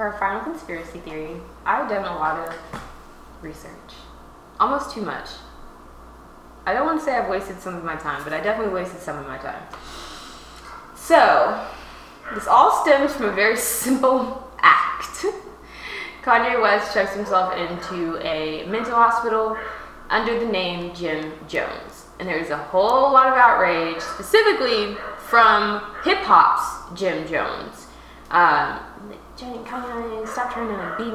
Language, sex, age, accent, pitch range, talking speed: English, female, 10-29, American, 170-235 Hz, 145 wpm